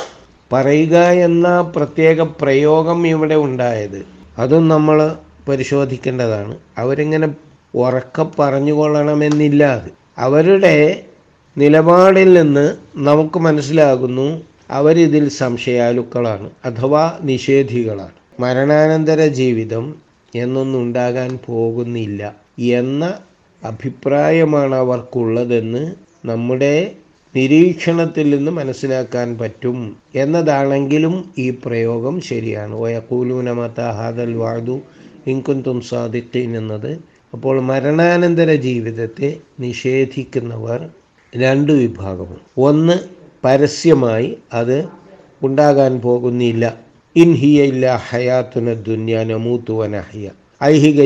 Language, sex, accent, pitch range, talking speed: Malayalam, male, native, 120-150 Hz, 65 wpm